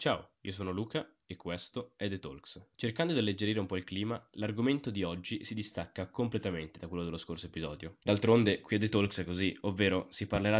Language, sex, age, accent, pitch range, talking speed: Italian, male, 10-29, native, 90-105 Hz, 210 wpm